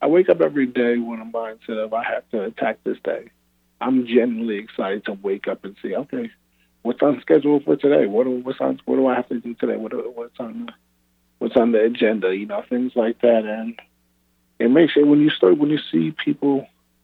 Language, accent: English, American